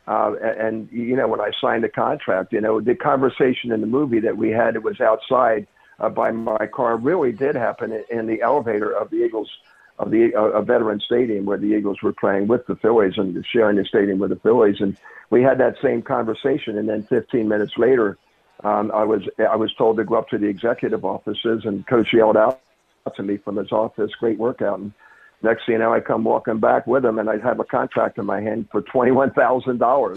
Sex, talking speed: male, 225 wpm